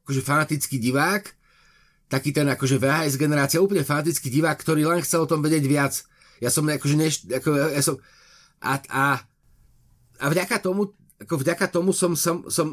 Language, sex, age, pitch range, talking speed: Slovak, male, 30-49, 135-170 Hz, 170 wpm